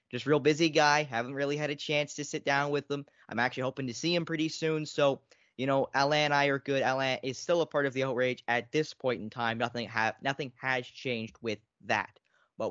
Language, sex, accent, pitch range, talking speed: English, male, American, 115-145 Hz, 240 wpm